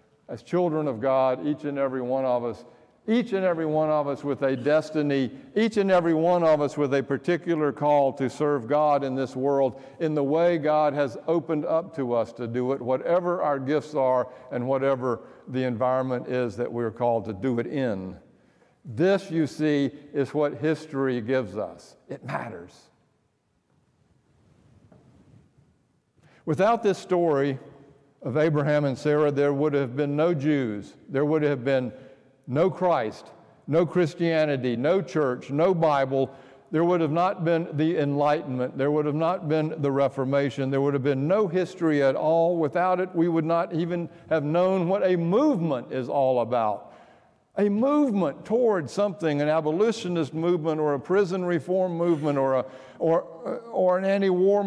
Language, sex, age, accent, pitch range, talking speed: English, male, 60-79, American, 135-170 Hz, 165 wpm